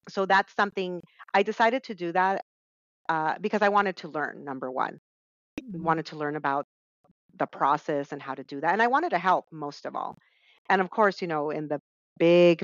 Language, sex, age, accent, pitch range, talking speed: English, female, 40-59, American, 145-180 Hz, 210 wpm